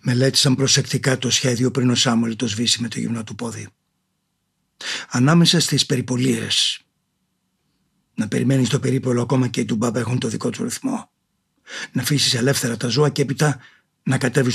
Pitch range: 125-145 Hz